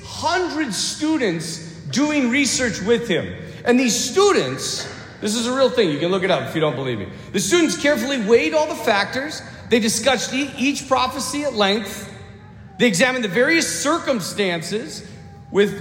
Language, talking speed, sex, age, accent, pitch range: English, 165 wpm, male, 40-59, American, 195-280 Hz